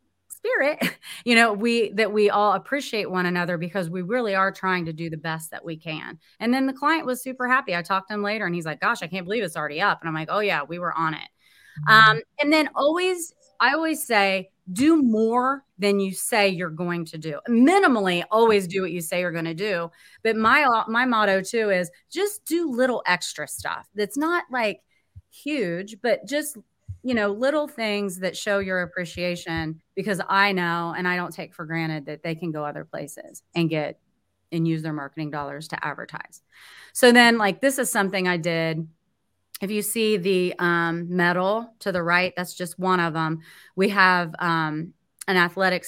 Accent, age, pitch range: American, 30-49, 170-220 Hz